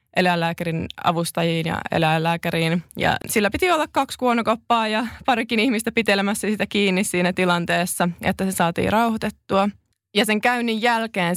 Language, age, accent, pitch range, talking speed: Finnish, 20-39, native, 185-225 Hz, 135 wpm